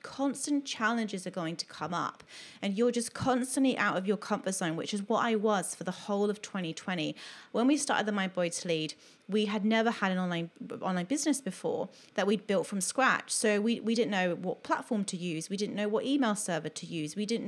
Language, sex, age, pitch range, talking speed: English, female, 30-49, 190-245 Hz, 225 wpm